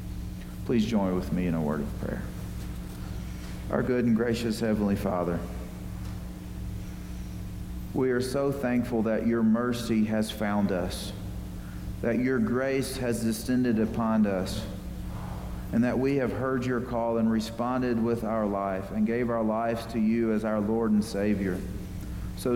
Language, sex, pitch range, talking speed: English, male, 110-135 Hz, 150 wpm